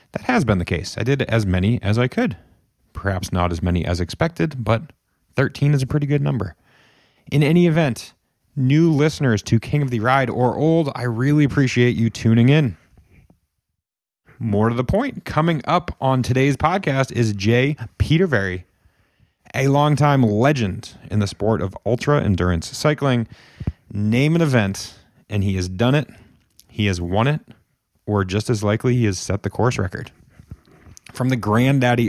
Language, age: English, 30-49